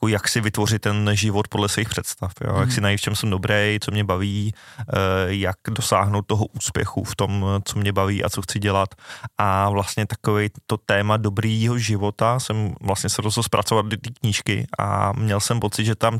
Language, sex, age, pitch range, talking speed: Czech, male, 20-39, 100-110 Hz, 195 wpm